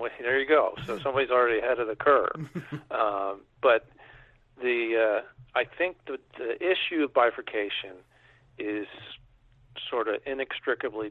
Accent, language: American, English